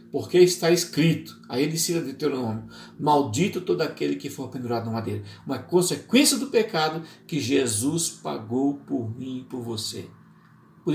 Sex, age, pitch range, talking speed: male, 50-69, 130-185 Hz, 160 wpm